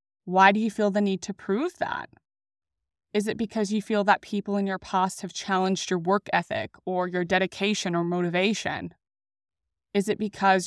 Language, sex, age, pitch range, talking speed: English, female, 20-39, 185-220 Hz, 180 wpm